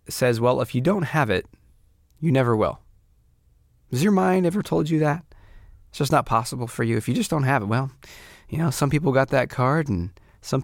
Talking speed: 220 wpm